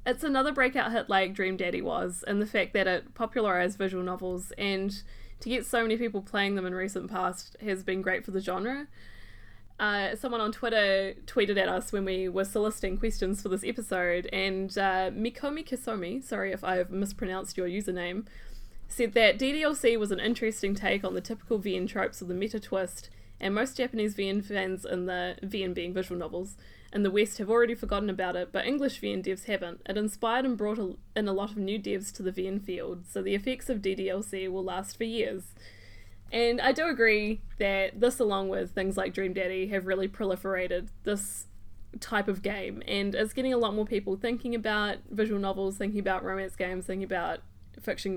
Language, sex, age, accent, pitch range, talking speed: English, female, 10-29, Australian, 185-220 Hz, 200 wpm